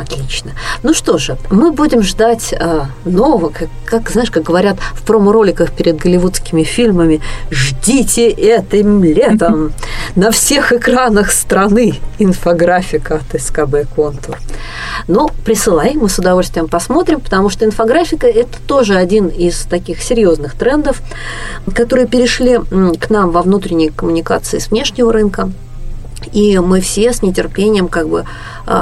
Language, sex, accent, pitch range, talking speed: Russian, female, native, 145-230 Hz, 135 wpm